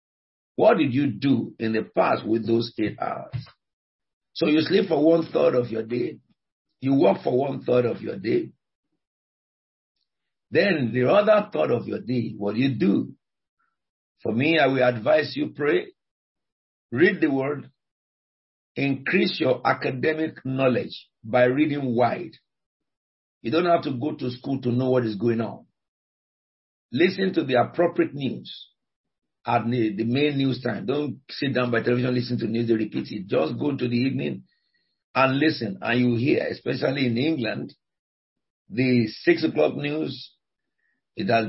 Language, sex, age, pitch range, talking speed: English, male, 50-69, 115-145 Hz, 160 wpm